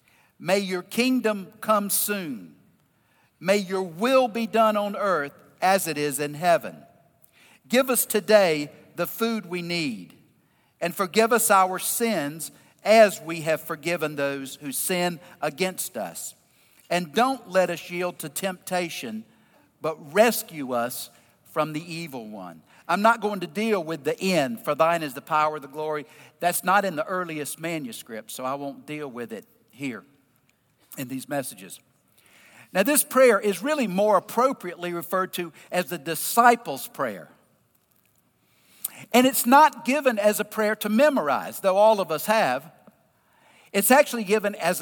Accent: American